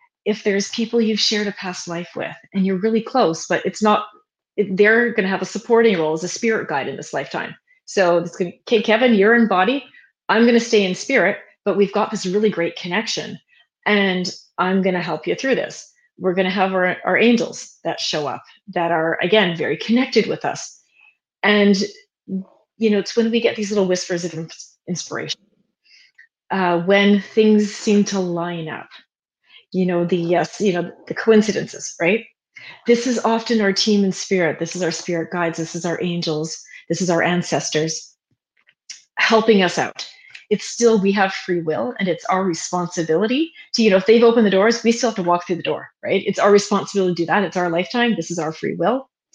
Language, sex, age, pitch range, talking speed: English, female, 30-49, 175-220 Hz, 200 wpm